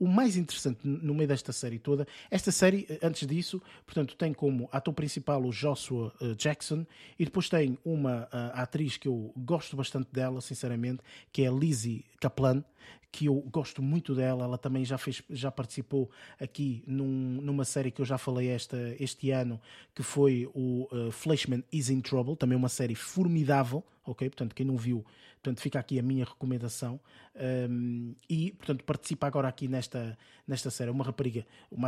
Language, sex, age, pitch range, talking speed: Portuguese, male, 20-39, 125-155 Hz, 170 wpm